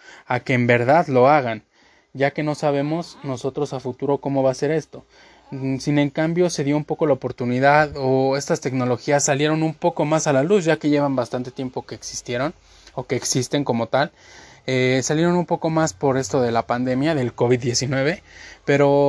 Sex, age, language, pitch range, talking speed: male, 20-39, Spanish, 125-150 Hz, 190 wpm